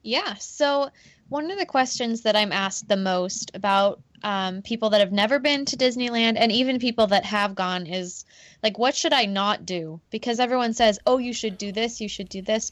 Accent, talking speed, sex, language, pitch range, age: American, 210 wpm, female, English, 190-230 Hz, 20-39